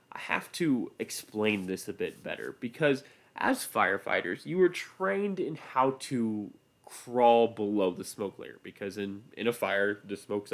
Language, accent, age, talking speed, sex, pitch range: English, American, 20-39, 165 wpm, male, 100-135 Hz